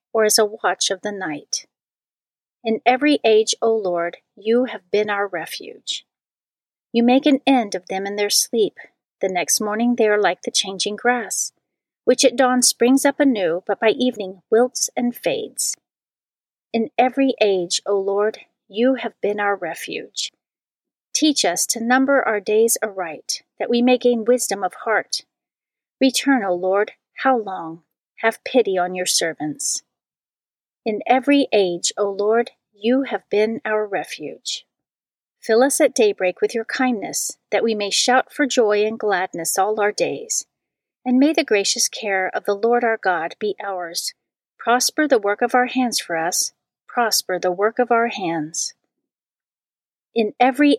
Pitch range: 200-250 Hz